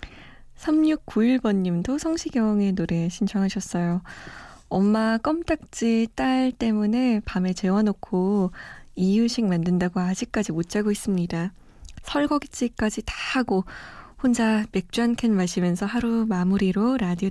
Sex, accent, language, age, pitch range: female, native, Korean, 20-39, 185-240 Hz